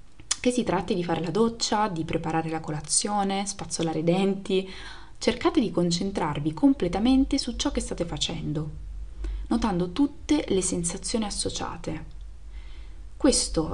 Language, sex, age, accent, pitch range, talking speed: Italian, female, 20-39, native, 165-225 Hz, 125 wpm